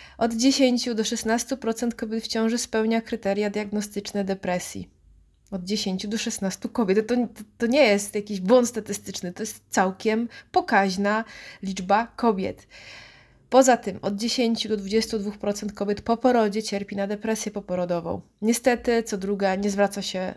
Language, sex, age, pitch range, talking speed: Polish, female, 20-39, 195-235 Hz, 145 wpm